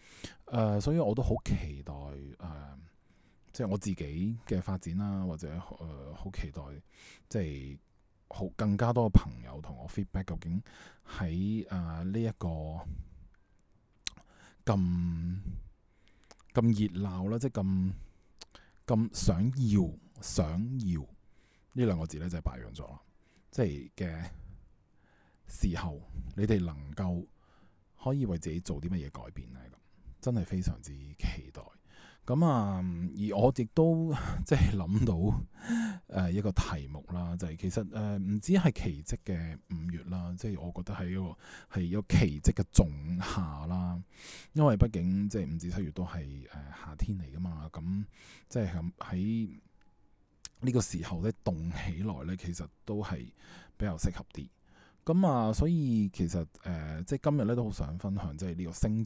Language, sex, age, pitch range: Chinese, male, 20-39, 85-105 Hz